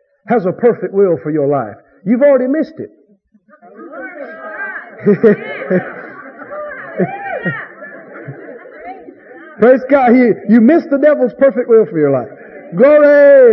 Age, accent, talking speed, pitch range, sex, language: 50-69, American, 105 wpm, 185-255 Hz, male, English